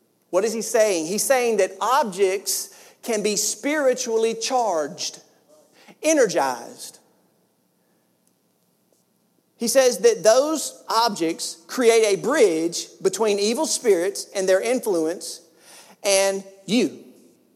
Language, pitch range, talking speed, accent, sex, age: English, 205-280 Hz, 100 wpm, American, male, 40-59